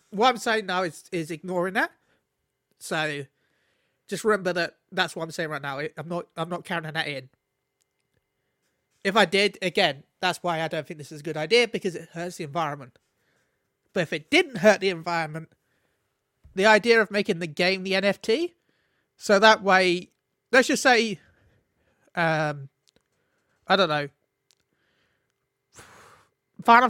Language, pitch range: English, 165-220 Hz